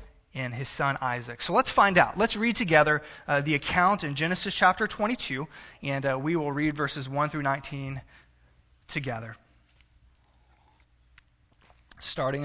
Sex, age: male, 20-39